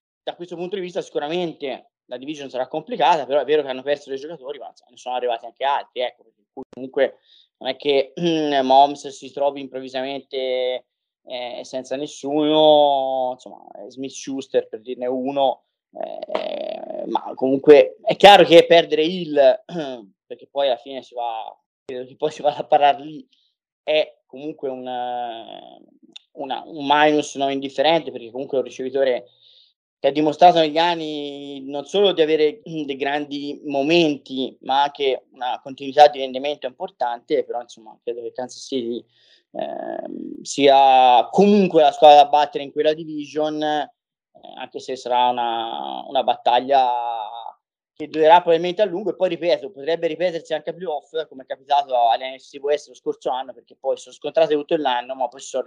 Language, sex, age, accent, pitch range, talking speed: Italian, male, 20-39, native, 130-170 Hz, 165 wpm